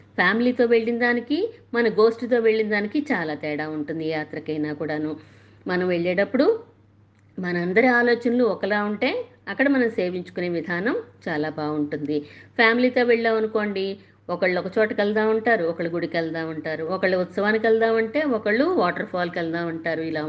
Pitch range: 165-225 Hz